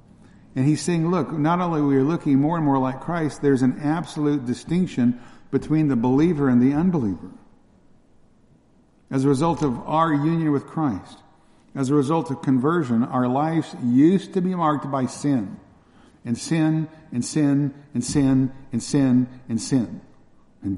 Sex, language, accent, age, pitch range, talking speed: male, English, American, 60-79, 130-155 Hz, 165 wpm